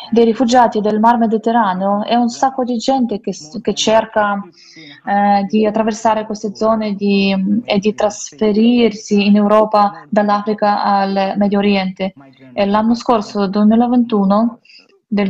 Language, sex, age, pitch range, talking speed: Italian, female, 20-39, 200-230 Hz, 130 wpm